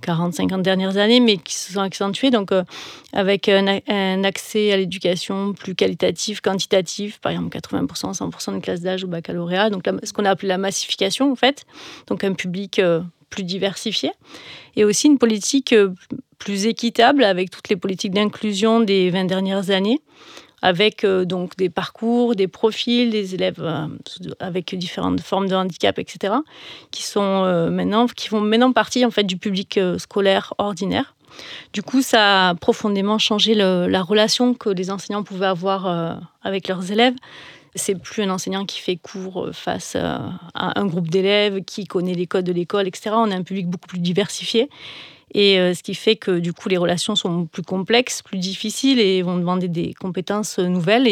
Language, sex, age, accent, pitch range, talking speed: French, female, 30-49, French, 185-220 Hz, 170 wpm